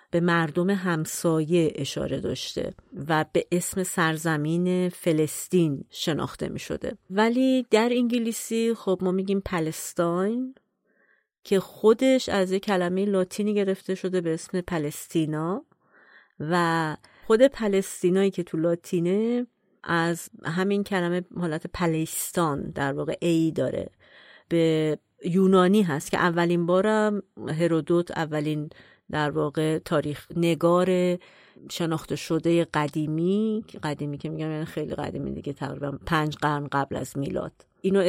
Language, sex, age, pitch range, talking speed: Persian, female, 40-59, 160-195 Hz, 120 wpm